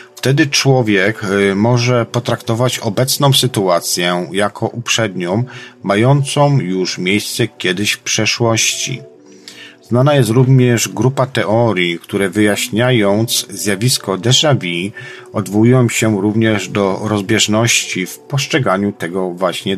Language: Polish